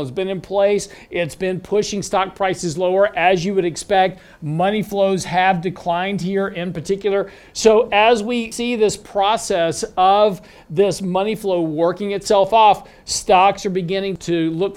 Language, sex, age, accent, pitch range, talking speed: English, male, 50-69, American, 170-205 Hz, 160 wpm